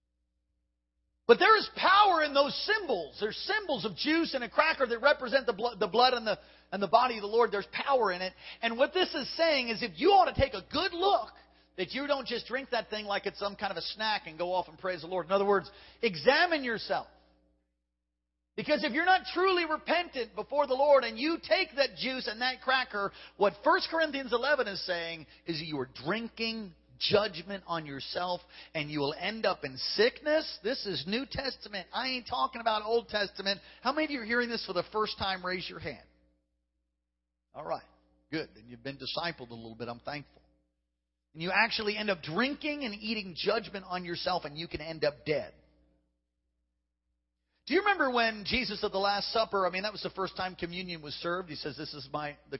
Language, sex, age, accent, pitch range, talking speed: English, male, 40-59, American, 145-240 Hz, 215 wpm